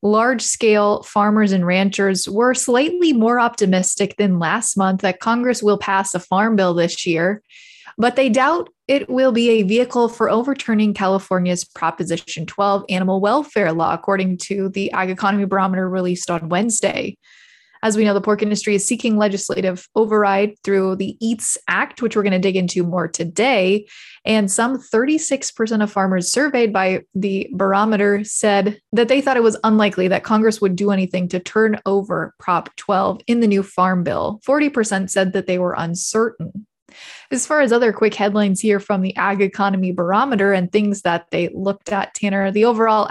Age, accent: 20-39, American